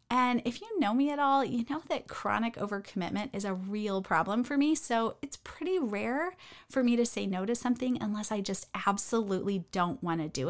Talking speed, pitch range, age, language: 210 wpm, 200-280 Hz, 30-49, English